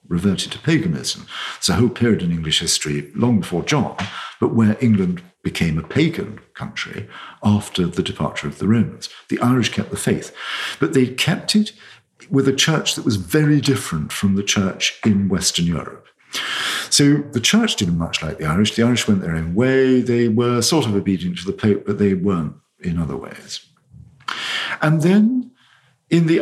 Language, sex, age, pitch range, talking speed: English, male, 50-69, 100-150 Hz, 180 wpm